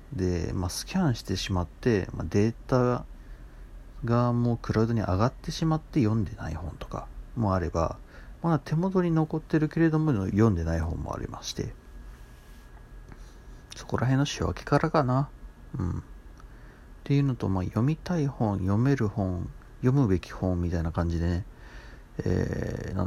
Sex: male